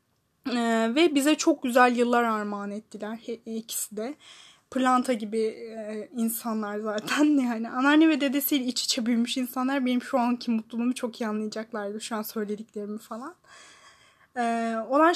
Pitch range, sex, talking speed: 215-280 Hz, female, 150 wpm